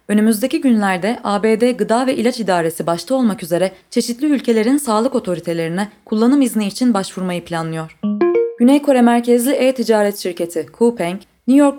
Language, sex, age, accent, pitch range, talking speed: Turkish, female, 20-39, native, 180-245 Hz, 135 wpm